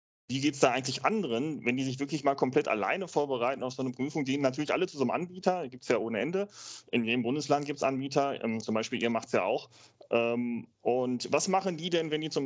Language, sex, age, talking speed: German, male, 30-49, 245 wpm